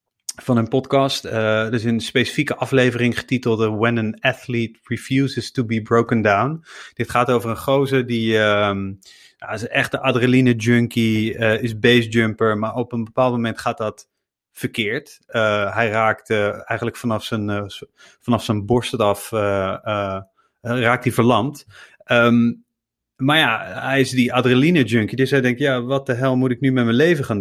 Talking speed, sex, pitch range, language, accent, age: 180 wpm, male, 105-125 Hz, Dutch, Dutch, 30-49